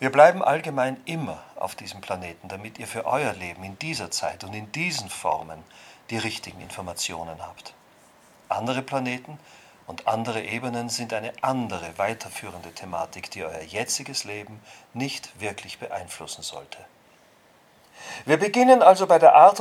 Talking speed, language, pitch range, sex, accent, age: 145 wpm, German, 110-145 Hz, male, German, 40-59